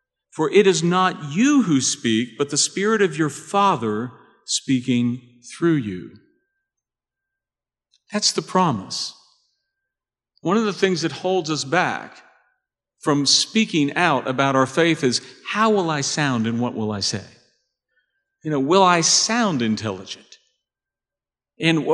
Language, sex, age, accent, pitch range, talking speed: English, male, 50-69, American, 140-210 Hz, 135 wpm